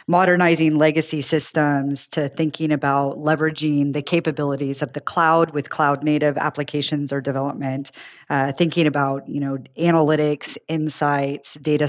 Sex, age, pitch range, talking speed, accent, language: female, 30-49, 145-165 Hz, 125 wpm, American, English